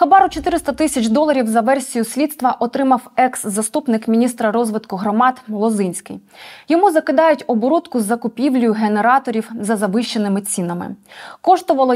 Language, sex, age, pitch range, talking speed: Ukrainian, female, 20-39, 220-285 Hz, 115 wpm